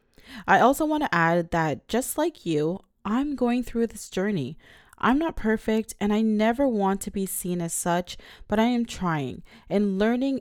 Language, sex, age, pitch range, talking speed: English, female, 20-39, 180-240 Hz, 185 wpm